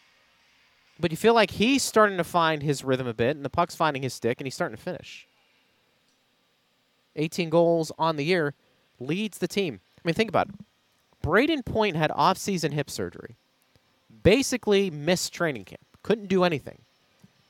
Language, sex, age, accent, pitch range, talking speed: English, male, 30-49, American, 130-175 Hz, 170 wpm